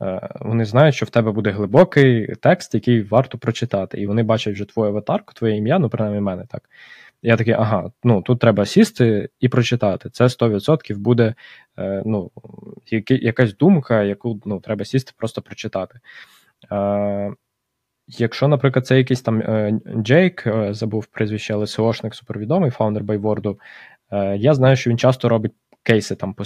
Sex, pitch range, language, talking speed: male, 105-125 Hz, Ukrainian, 150 wpm